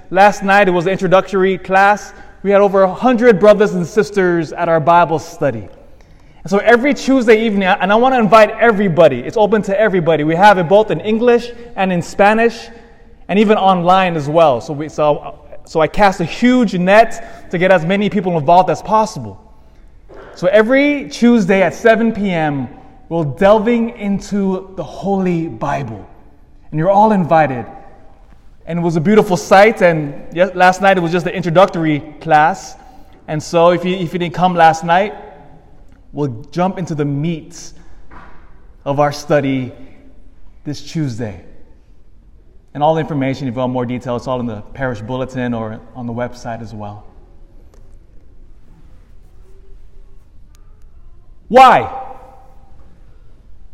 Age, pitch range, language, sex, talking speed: 20-39, 130-200 Hz, English, male, 150 wpm